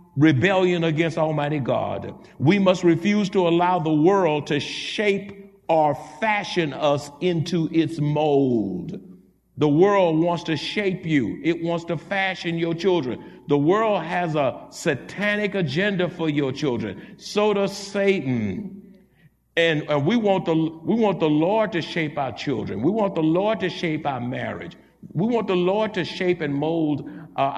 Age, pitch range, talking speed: 60-79, 150-195 Hz, 160 wpm